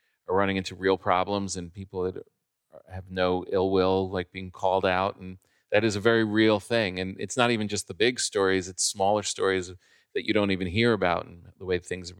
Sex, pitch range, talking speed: male, 95-120 Hz, 220 wpm